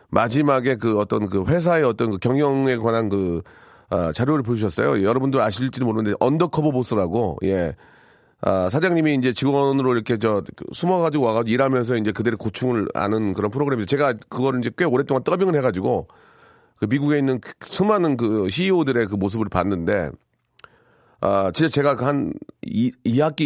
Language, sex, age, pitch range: Korean, male, 40-59, 110-150 Hz